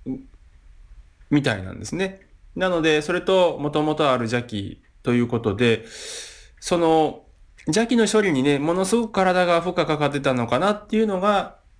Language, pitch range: Japanese, 110-180 Hz